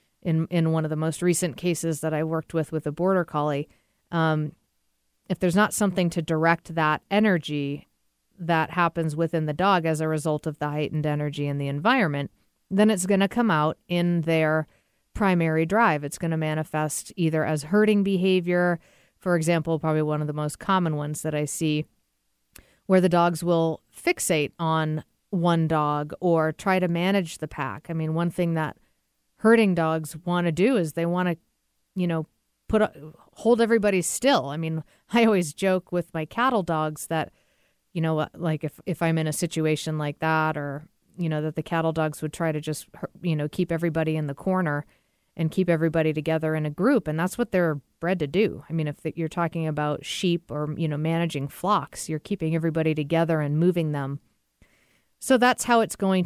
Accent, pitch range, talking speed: American, 155-180 Hz, 195 wpm